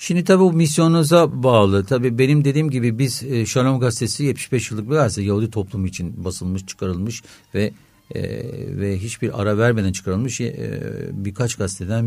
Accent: native